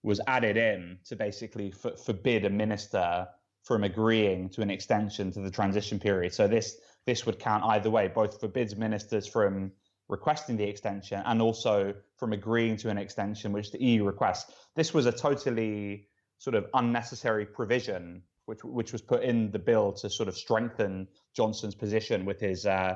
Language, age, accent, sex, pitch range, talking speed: English, 20-39, British, male, 100-115 Hz, 175 wpm